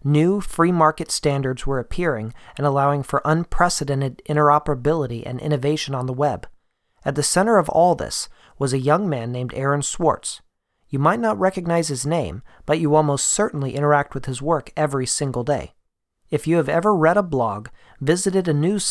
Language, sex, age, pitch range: English, male, 40-59, 135-160 Hz